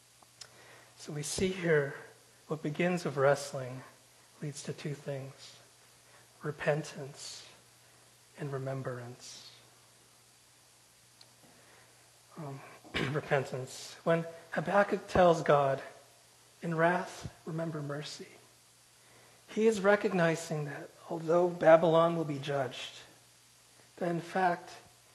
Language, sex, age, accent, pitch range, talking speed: English, male, 40-59, American, 140-170 Hz, 90 wpm